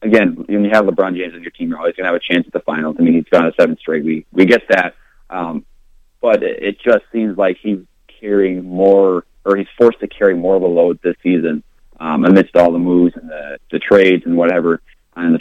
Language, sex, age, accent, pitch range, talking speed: English, male, 30-49, American, 90-105 Hz, 250 wpm